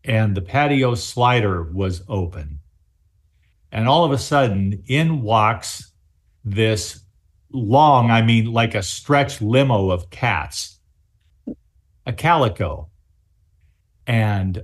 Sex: male